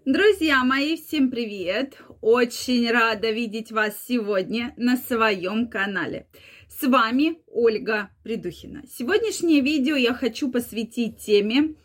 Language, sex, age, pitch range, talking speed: Russian, female, 20-39, 205-265 Hz, 110 wpm